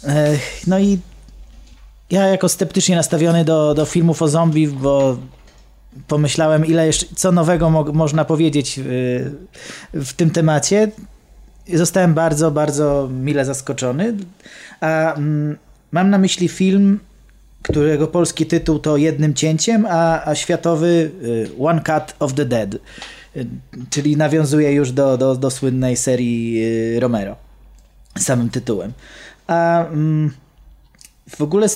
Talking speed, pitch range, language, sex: 125 wpm, 135-170 Hz, Polish, male